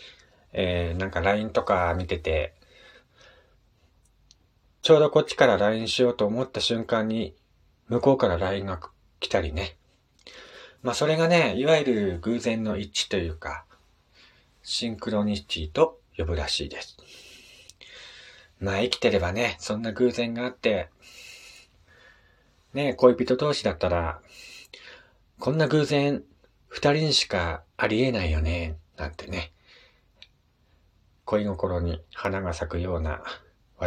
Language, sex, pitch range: Japanese, male, 85-120 Hz